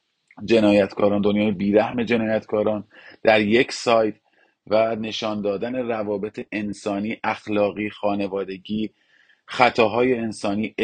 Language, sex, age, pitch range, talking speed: Persian, male, 40-59, 100-110 Hz, 90 wpm